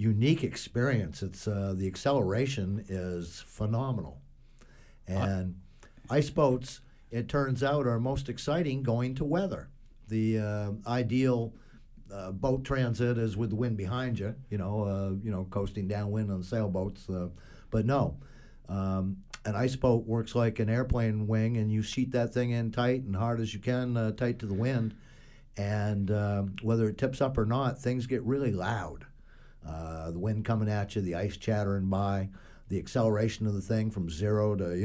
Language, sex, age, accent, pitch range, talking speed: English, male, 60-79, American, 95-120 Hz, 175 wpm